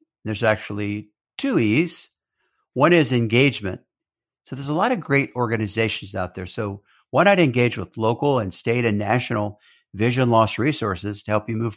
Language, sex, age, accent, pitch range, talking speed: English, male, 60-79, American, 105-130 Hz, 170 wpm